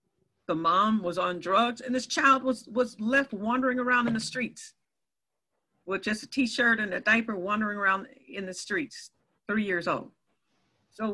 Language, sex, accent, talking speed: English, female, American, 170 wpm